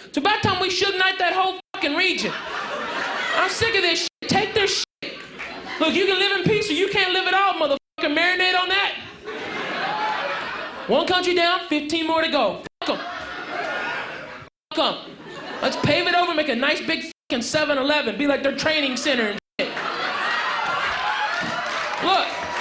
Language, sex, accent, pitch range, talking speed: English, male, American, 315-400 Hz, 170 wpm